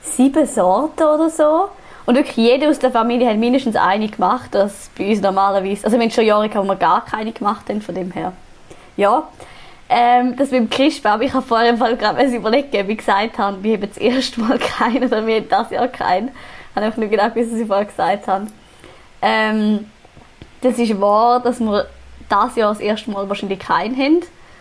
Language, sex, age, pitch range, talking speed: German, female, 10-29, 195-230 Hz, 205 wpm